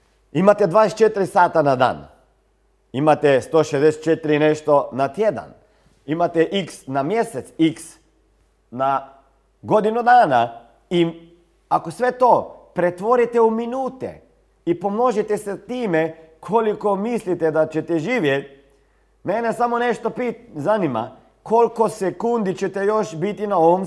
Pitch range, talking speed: 140-220 Hz, 115 wpm